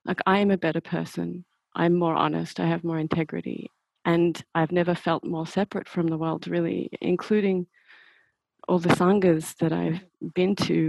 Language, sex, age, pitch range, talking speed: English, female, 30-49, 165-185 Hz, 170 wpm